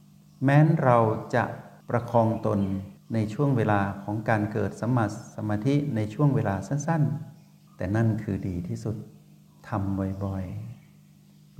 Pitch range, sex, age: 100-140 Hz, male, 60-79